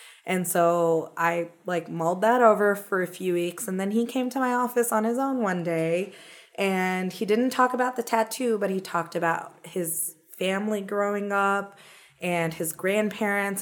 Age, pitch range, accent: 20-39, 170-215 Hz, American